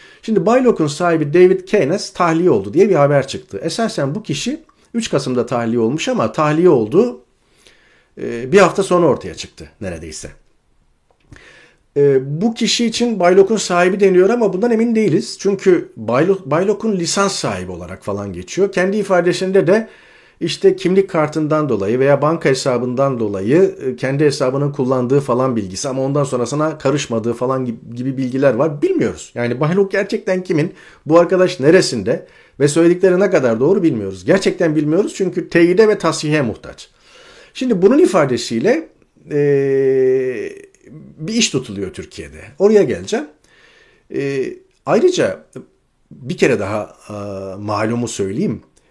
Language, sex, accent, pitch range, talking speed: Turkish, male, native, 130-200 Hz, 130 wpm